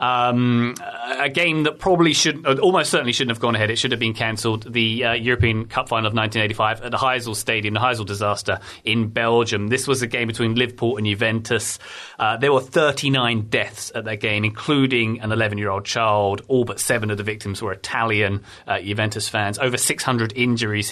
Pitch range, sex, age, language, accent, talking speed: 110-130 Hz, male, 30-49, English, British, 200 wpm